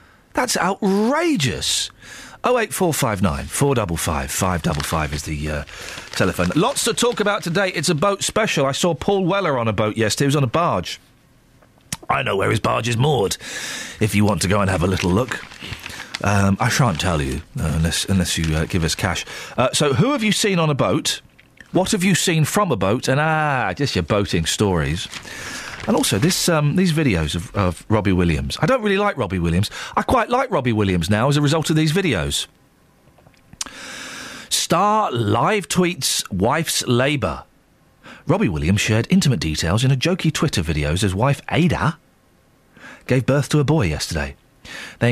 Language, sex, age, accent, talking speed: English, male, 40-59, British, 180 wpm